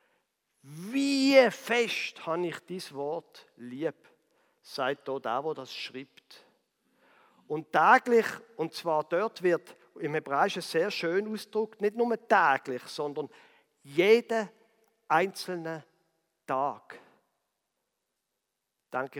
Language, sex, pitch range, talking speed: German, male, 150-210 Hz, 95 wpm